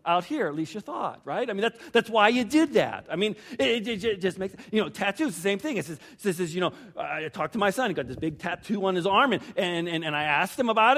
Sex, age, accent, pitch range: male, 40-59, American, 155-210 Hz